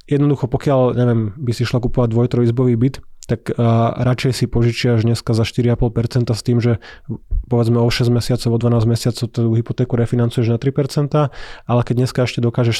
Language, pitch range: Slovak, 120-130 Hz